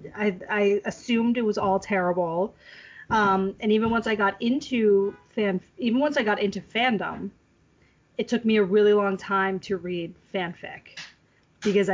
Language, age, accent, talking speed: English, 30-49, American, 160 wpm